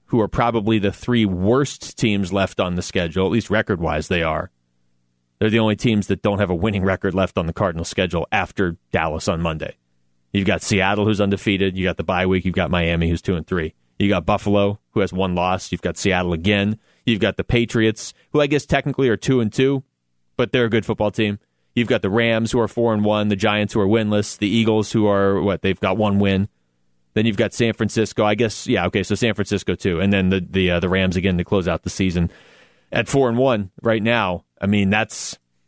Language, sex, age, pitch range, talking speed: English, male, 30-49, 90-115 Hz, 235 wpm